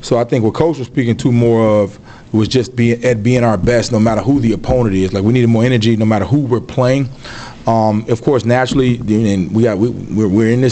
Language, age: English, 30-49